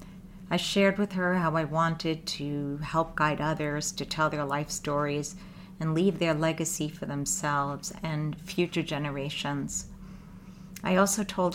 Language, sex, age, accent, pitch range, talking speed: English, female, 50-69, American, 155-190 Hz, 145 wpm